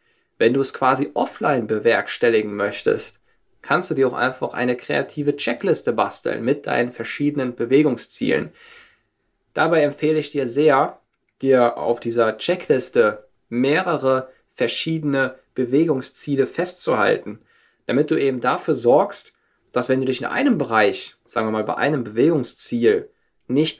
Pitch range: 115-150 Hz